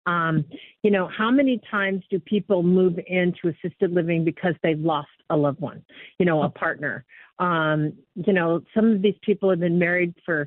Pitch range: 165-200 Hz